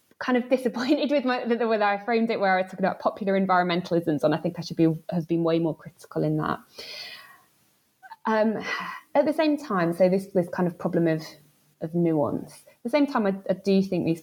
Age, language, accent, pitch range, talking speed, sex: 20-39, English, British, 165-200 Hz, 220 wpm, female